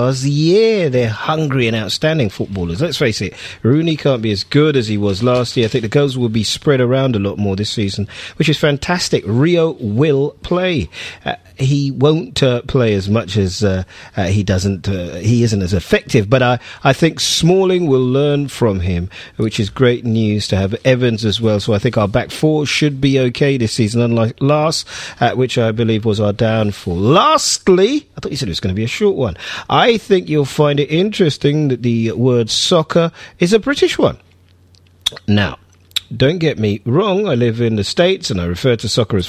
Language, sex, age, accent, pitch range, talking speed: English, male, 40-59, British, 105-150 Hz, 210 wpm